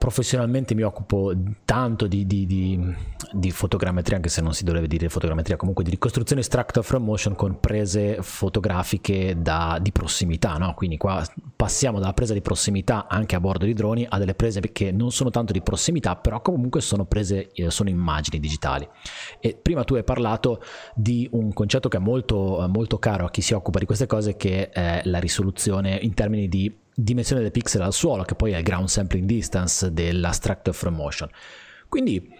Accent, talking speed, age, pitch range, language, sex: native, 185 wpm, 30-49, 95-115 Hz, Italian, male